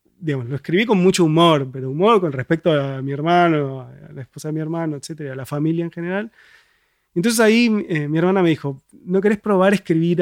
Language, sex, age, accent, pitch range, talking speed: Spanish, male, 30-49, Argentinian, 145-175 Hz, 210 wpm